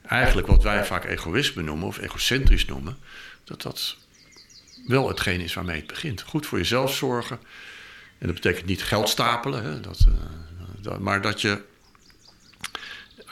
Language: Dutch